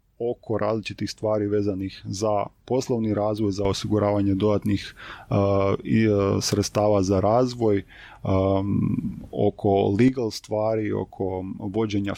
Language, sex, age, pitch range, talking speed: Croatian, male, 20-39, 100-110 Hz, 90 wpm